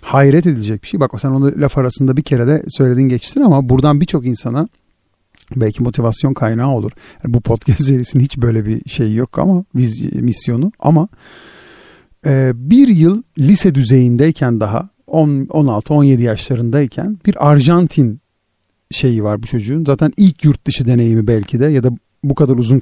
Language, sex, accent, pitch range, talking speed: Turkish, male, native, 120-170 Hz, 165 wpm